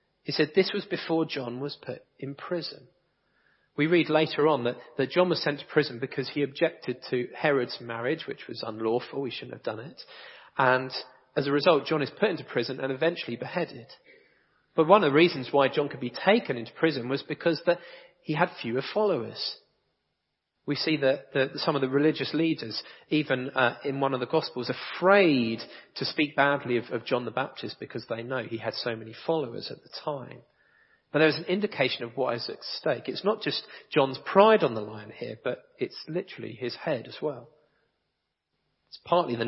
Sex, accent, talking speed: male, British, 200 wpm